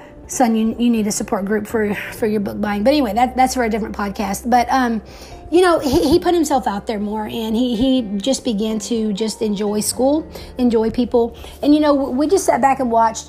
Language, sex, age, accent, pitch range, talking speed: English, female, 30-49, American, 225-275 Hz, 230 wpm